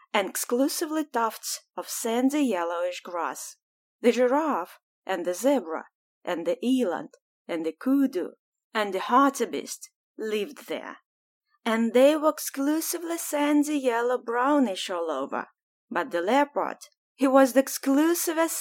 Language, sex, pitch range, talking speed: Russian, female, 195-285 Hz, 115 wpm